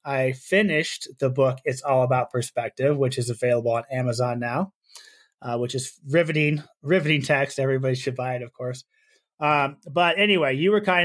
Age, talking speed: 30-49, 175 wpm